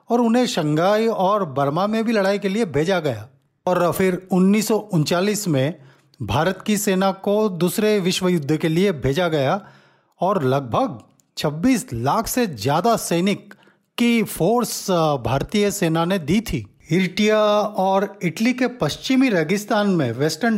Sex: male